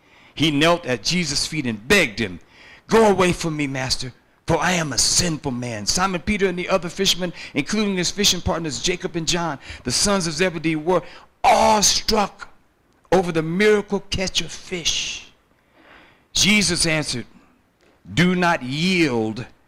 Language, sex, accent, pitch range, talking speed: English, male, American, 110-170 Hz, 150 wpm